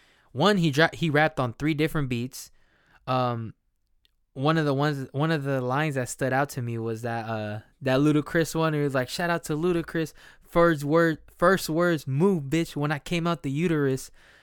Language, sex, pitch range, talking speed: English, male, 120-150 Hz, 200 wpm